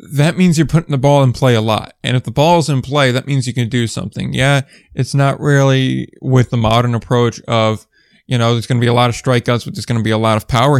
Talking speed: 270 wpm